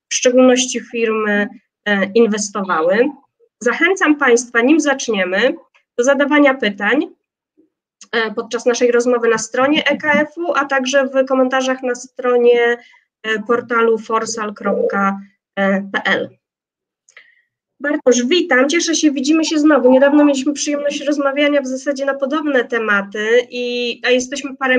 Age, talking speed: 20-39, 110 wpm